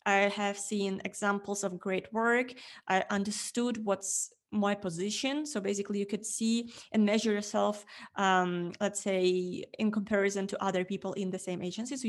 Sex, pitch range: female, 195-220 Hz